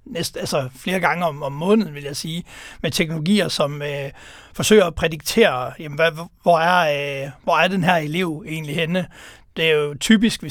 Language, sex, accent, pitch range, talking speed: Danish, male, native, 145-195 Hz, 195 wpm